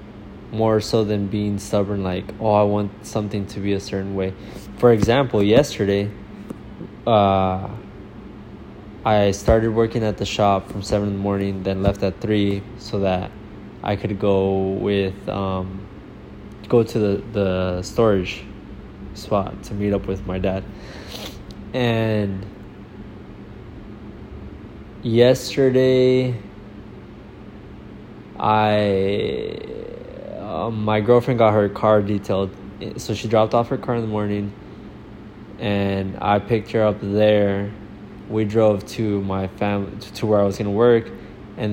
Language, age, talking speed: English, 20-39, 130 wpm